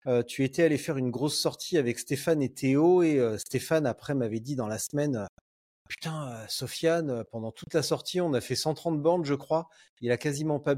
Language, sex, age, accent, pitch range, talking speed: French, male, 30-49, French, 120-155 Hz, 210 wpm